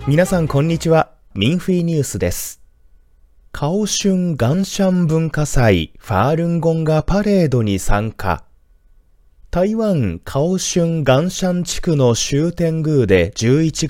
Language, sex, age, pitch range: Japanese, male, 20-39, 115-180 Hz